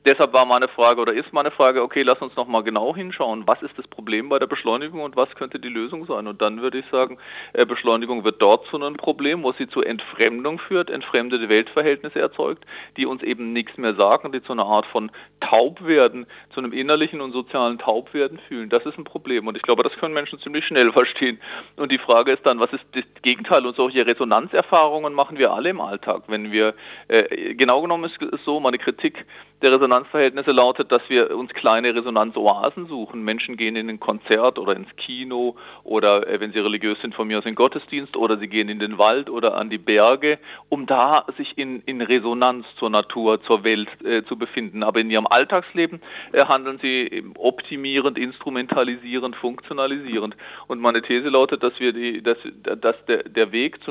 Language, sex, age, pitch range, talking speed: German, male, 40-59, 115-140 Hz, 195 wpm